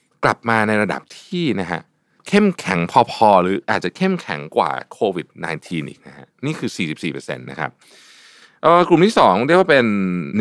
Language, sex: Thai, male